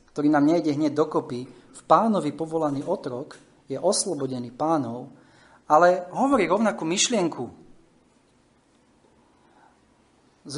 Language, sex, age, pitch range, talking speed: Slovak, male, 30-49, 130-165 Hz, 95 wpm